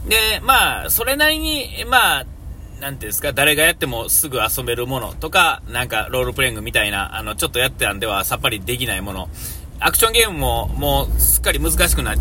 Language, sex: Japanese, male